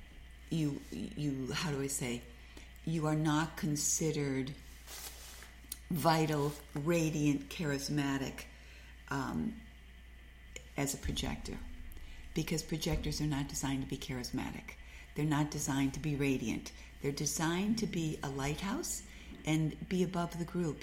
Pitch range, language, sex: 135-165 Hz, English, female